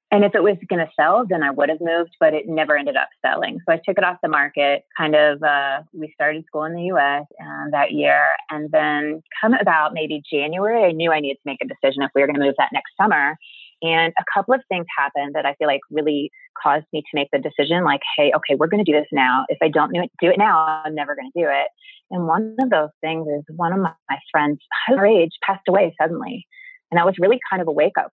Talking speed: 260 wpm